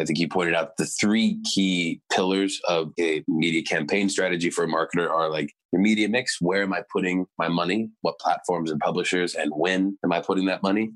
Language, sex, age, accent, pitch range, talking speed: English, male, 20-39, American, 85-105 Hz, 215 wpm